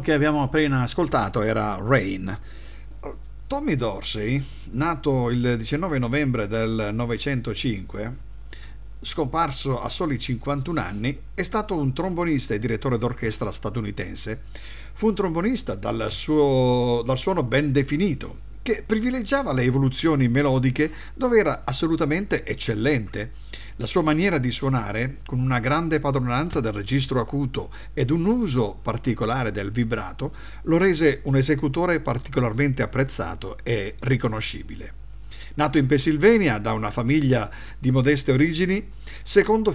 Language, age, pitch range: Italian, 50-69, 115-150 Hz